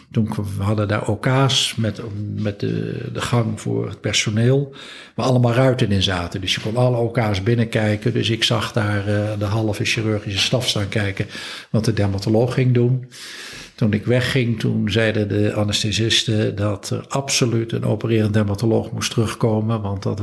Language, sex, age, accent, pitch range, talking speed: Dutch, male, 50-69, Dutch, 105-120 Hz, 165 wpm